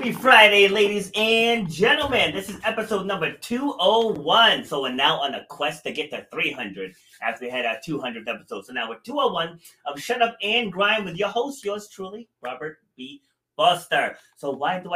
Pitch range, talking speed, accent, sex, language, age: 145-210 Hz, 185 wpm, American, male, English, 30-49